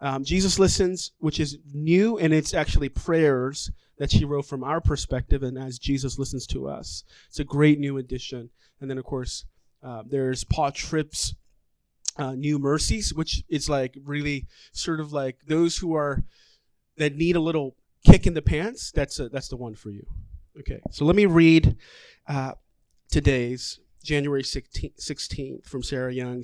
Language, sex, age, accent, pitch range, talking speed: English, male, 30-49, American, 125-155 Hz, 170 wpm